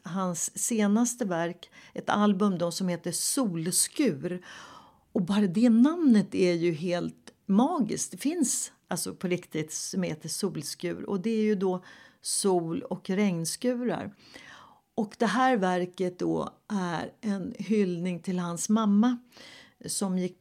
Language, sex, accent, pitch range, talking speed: Swedish, female, native, 175-225 Hz, 135 wpm